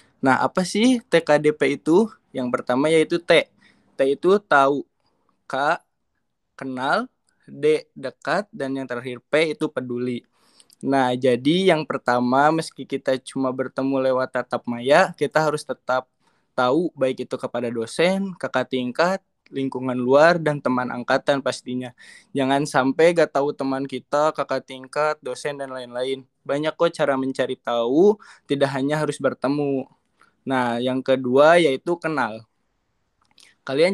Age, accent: 20-39, native